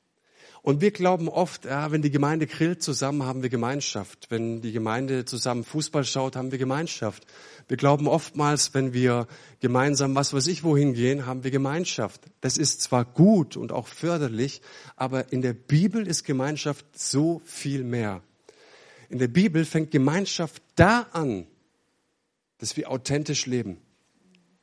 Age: 50-69